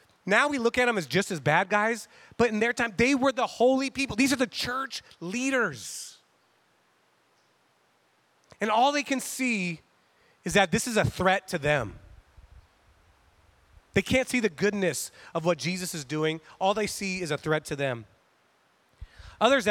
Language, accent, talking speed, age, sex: English, American, 170 wpm, 30-49, male